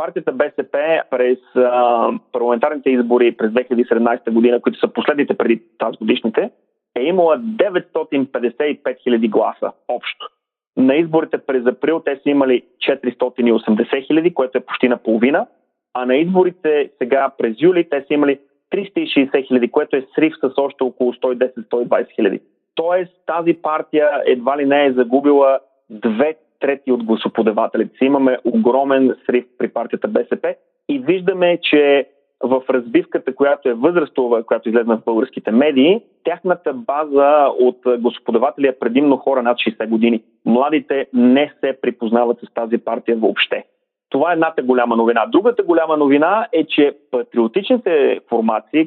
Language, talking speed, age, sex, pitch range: Bulgarian, 140 wpm, 30-49, male, 120-155 Hz